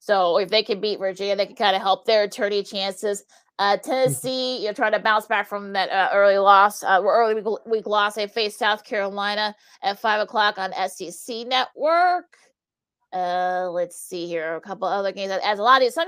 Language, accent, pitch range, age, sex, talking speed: English, American, 205-245 Hz, 30-49, female, 210 wpm